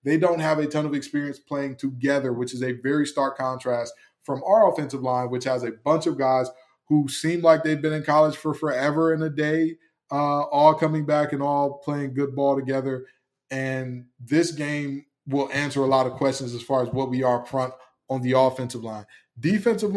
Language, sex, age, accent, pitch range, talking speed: English, male, 20-39, American, 130-150 Hz, 205 wpm